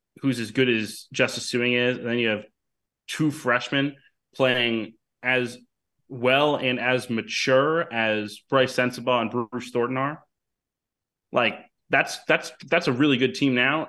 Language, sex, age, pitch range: English, male, 20-39, 115-135 Hz